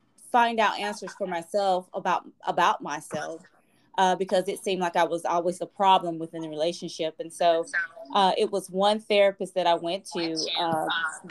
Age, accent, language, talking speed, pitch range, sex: 20-39, American, English, 175 wpm, 180-210 Hz, female